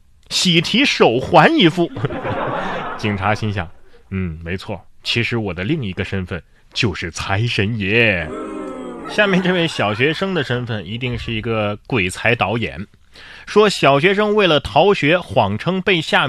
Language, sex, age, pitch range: Chinese, male, 30-49, 100-145 Hz